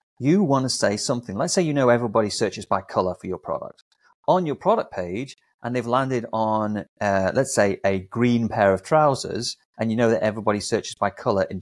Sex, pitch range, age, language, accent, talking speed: male, 95-125 Hz, 30-49, English, British, 210 wpm